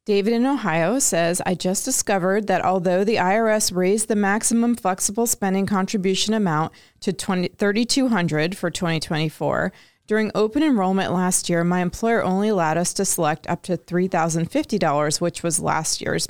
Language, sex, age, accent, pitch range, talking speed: English, female, 30-49, American, 170-200 Hz, 145 wpm